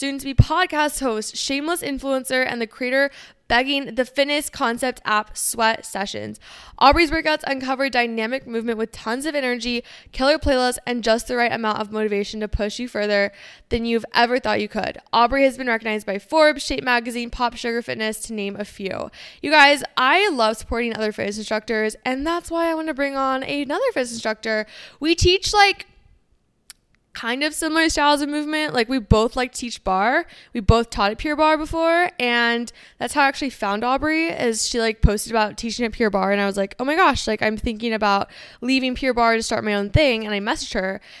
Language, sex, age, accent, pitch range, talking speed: English, female, 10-29, American, 215-275 Hz, 200 wpm